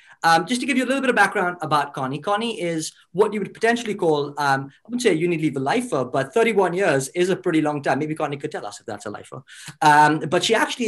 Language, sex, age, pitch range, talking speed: English, male, 30-49, 135-180 Hz, 260 wpm